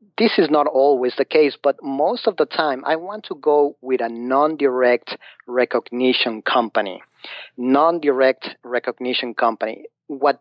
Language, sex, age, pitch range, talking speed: English, male, 40-59, 130-150 Hz, 140 wpm